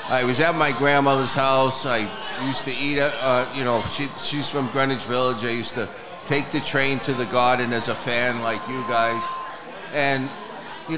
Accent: American